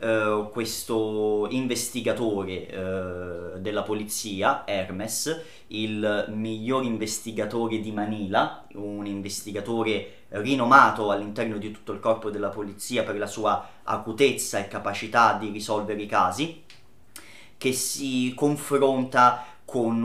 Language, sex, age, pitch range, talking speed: Italian, male, 30-49, 100-115 Hz, 100 wpm